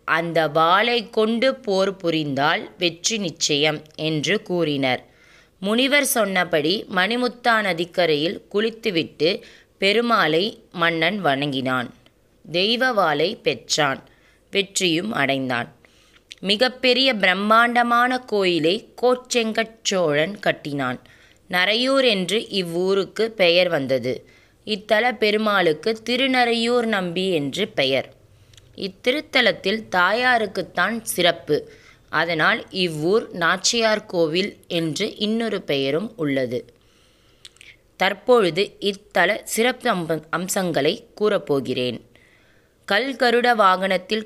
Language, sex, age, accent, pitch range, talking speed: Tamil, female, 20-39, native, 155-220 Hz, 80 wpm